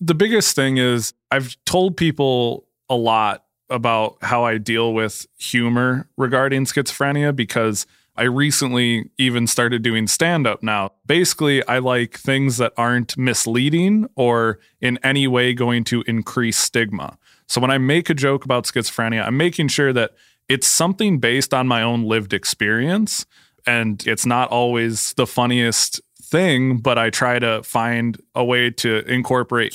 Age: 20-39